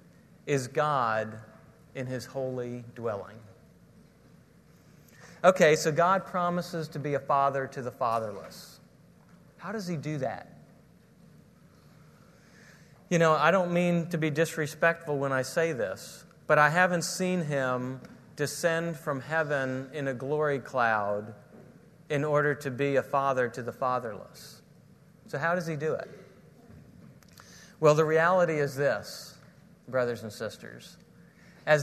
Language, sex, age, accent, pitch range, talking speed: English, male, 40-59, American, 135-180 Hz, 130 wpm